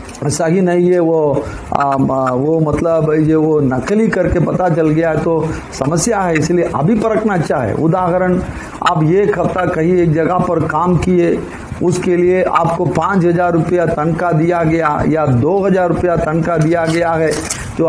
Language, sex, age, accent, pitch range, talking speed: Hindi, male, 50-69, native, 155-180 Hz, 165 wpm